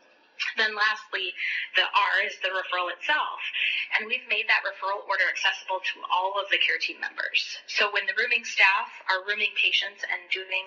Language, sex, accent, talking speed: English, female, American, 180 wpm